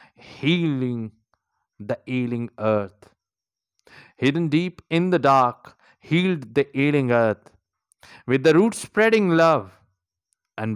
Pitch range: 100-135 Hz